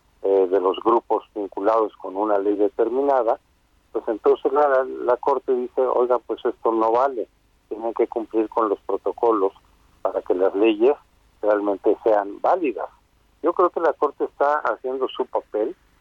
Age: 50-69